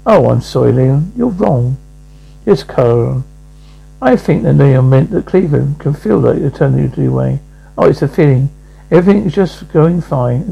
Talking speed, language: 165 wpm, English